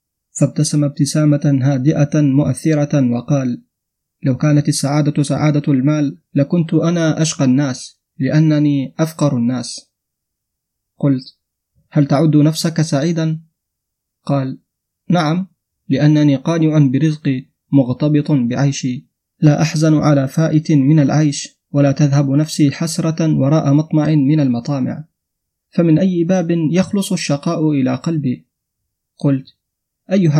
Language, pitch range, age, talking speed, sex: Arabic, 140-160 Hz, 30-49, 105 wpm, male